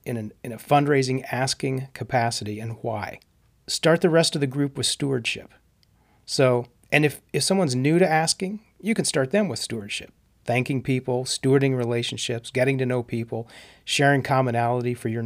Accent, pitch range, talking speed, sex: American, 120-145 Hz, 160 wpm, male